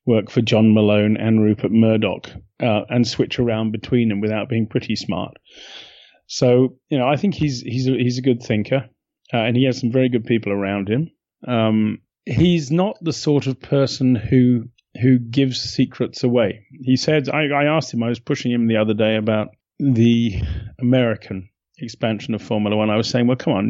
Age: 30-49